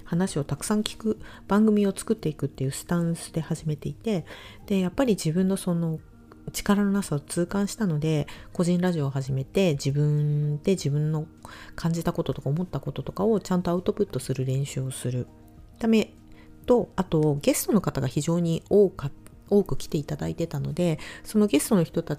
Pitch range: 135-190 Hz